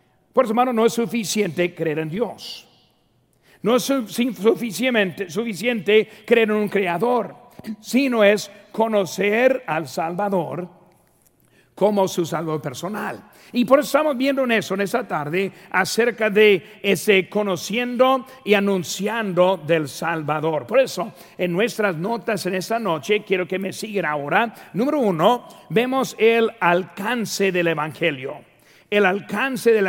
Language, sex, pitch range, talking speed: Spanish, male, 180-230 Hz, 135 wpm